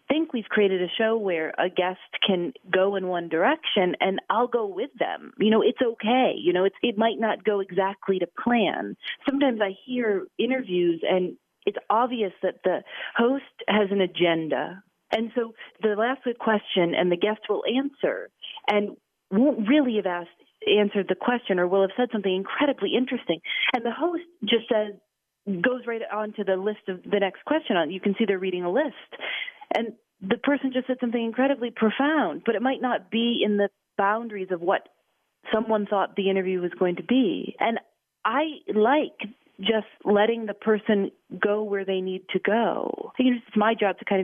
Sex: female